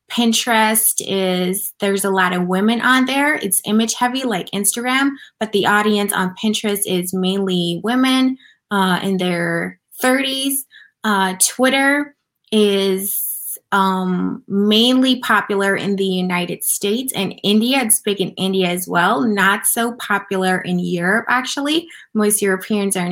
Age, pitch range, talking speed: 20-39, 185-230 Hz, 140 wpm